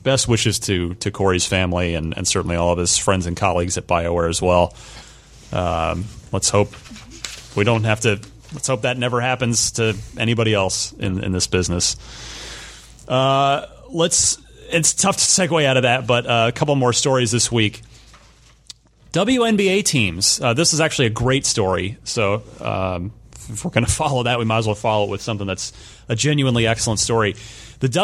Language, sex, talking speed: English, male, 185 wpm